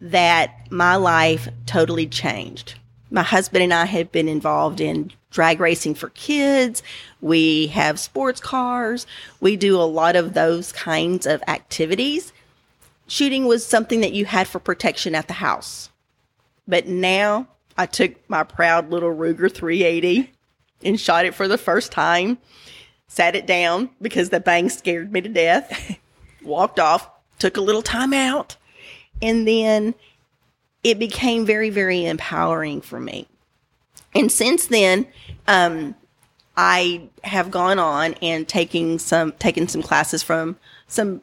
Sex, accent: female, American